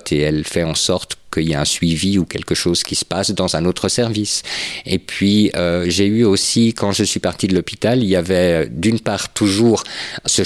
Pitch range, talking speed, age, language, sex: 85-105 Hz, 225 wpm, 50-69, French, male